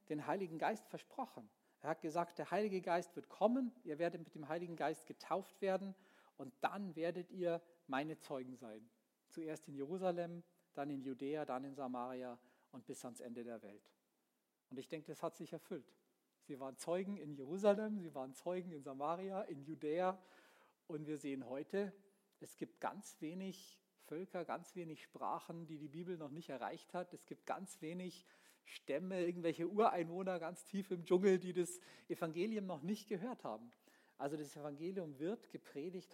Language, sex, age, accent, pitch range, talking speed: German, male, 50-69, German, 150-190 Hz, 170 wpm